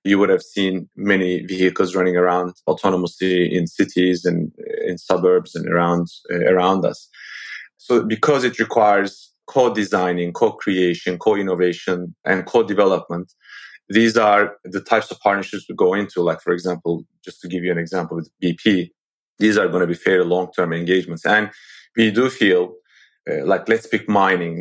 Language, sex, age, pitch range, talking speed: English, male, 30-49, 90-110 Hz, 160 wpm